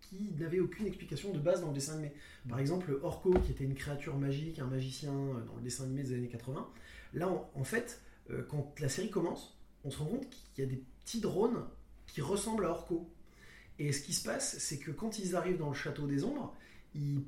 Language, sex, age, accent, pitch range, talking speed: French, male, 20-39, French, 140-185 Hz, 225 wpm